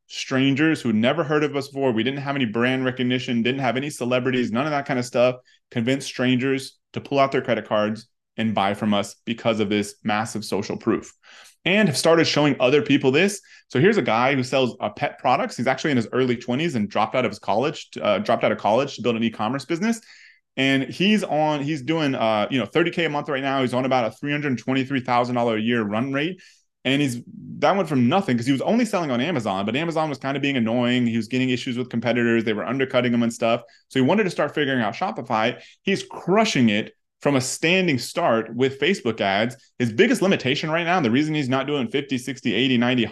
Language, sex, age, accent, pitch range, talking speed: English, male, 20-39, American, 120-145 Hz, 230 wpm